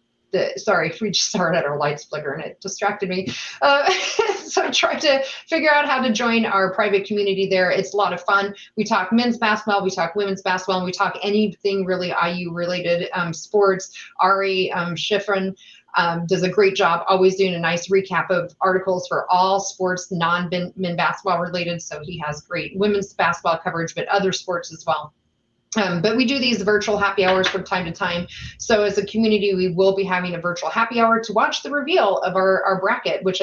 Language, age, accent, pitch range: English, 30-49, American, 175-205 Hz